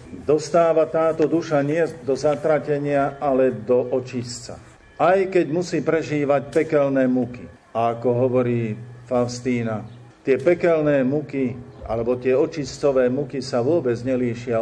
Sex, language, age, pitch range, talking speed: male, Slovak, 50-69, 115-145 Hz, 120 wpm